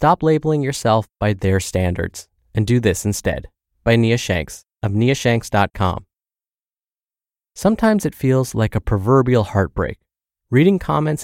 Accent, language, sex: American, English, male